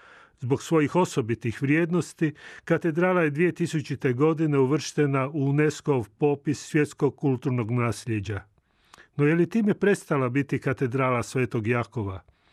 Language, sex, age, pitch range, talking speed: Croatian, male, 40-59, 125-155 Hz, 115 wpm